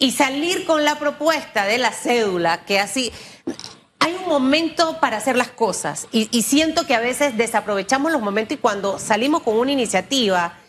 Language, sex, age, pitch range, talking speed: Spanish, female, 30-49, 210-285 Hz, 180 wpm